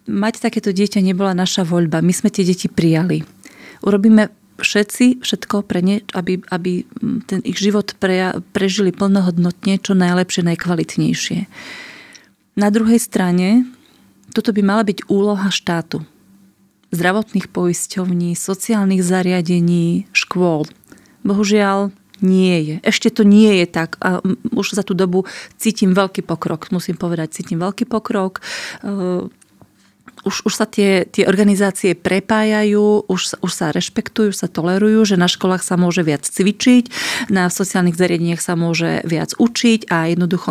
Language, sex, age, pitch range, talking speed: Slovak, female, 30-49, 180-210 Hz, 135 wpm